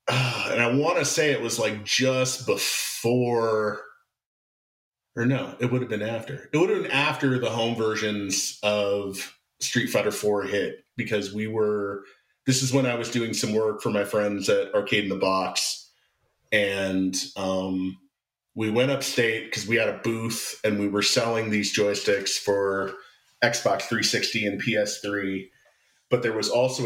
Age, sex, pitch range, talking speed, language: 30-49, male, 105-130 Hz, 170 wpm, English